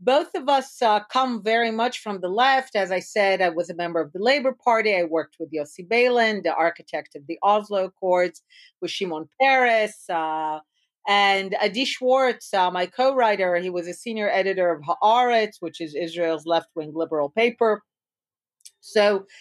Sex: female